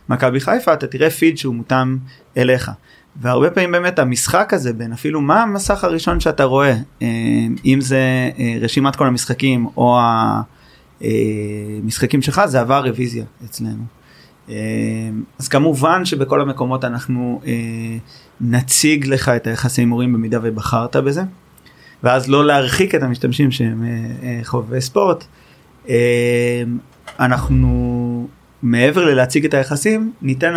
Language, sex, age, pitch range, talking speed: Hebrew, male, 30-49, 115-140 Hz, 115 wpm